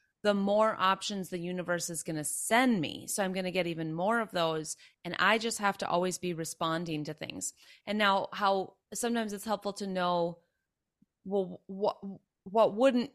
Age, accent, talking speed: 30-49, American, 185 wpm